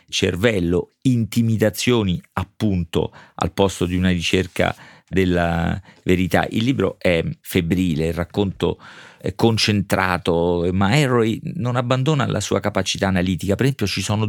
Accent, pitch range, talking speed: native, 95-120 Hz, 125 wpm